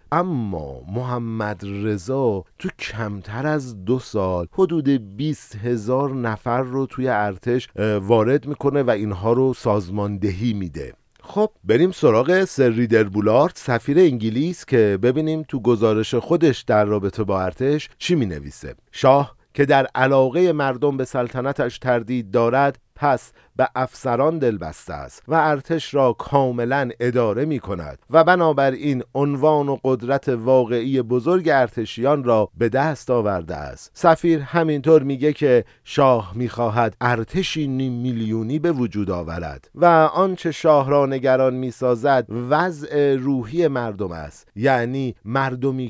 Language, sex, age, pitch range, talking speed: Persian, male, 50-69, 115-145 Hz, 130 wpm